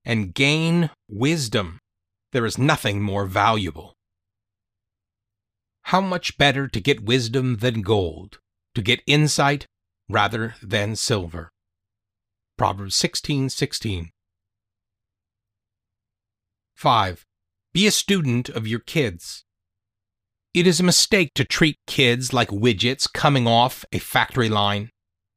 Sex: male